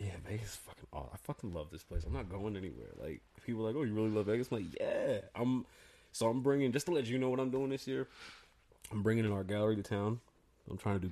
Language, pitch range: English, 90-110 Hz